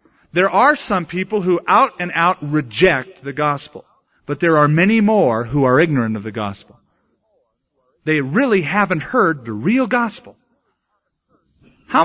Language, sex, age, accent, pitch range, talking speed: English, male, 40-59, American, 120-190 Hz, 150 wpm